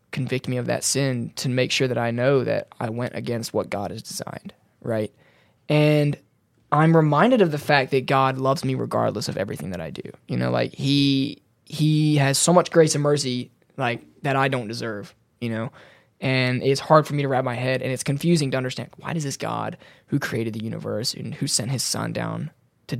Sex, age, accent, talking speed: male, 20-39, American, 215 wpm